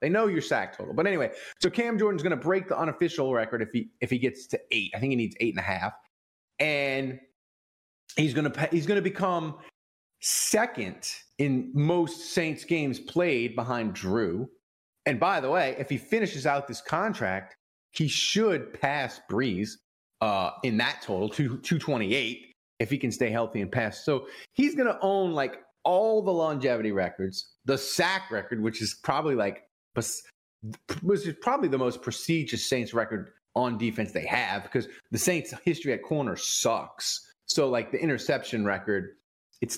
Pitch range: 115-175 Hz